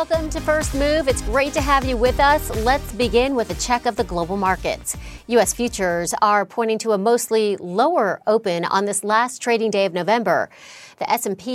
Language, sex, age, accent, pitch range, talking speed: English, female, 40-59, American, 200-260 Hz, 195 wpm